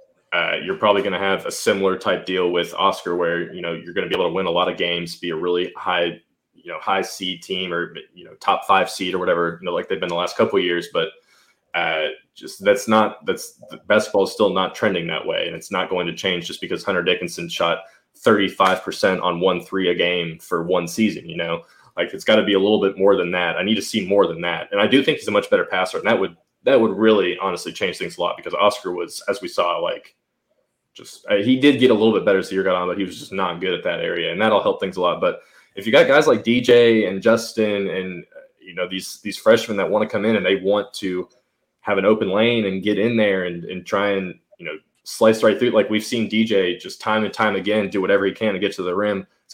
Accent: American